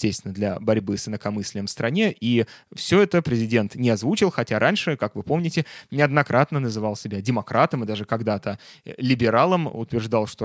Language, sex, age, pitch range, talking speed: Russian, male, 20-39, 110-135 Hz, 155 wpm